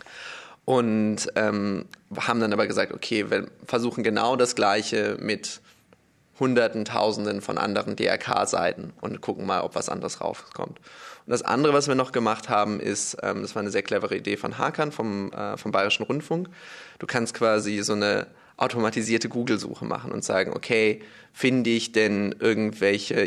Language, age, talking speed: German, 20-39, 160 wpm